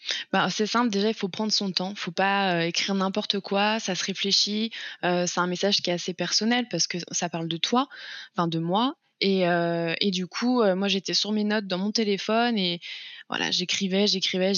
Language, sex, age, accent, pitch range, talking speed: French, female, 20-39, French, 180-205 Hz, 220 wpm